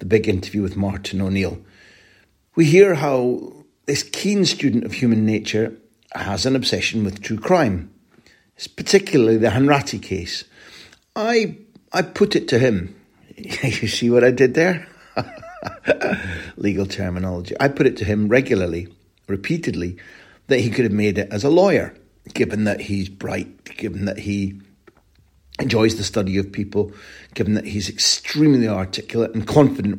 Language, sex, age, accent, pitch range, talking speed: English, male, 60-79, British, 100-130 Hz, 150 wpm